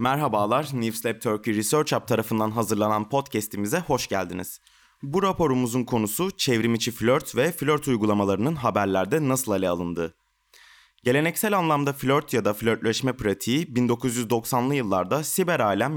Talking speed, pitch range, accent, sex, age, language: 130 wpm, 105-140 Hz, native, male, 30-49, Turkish